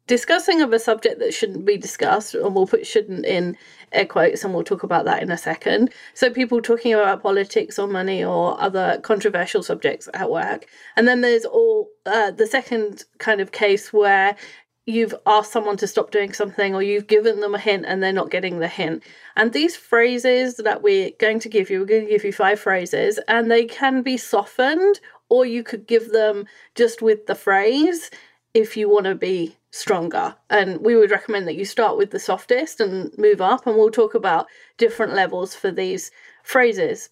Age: 30-49